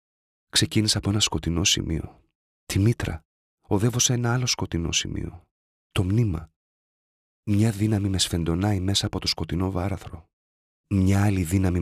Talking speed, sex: 130 wpm, male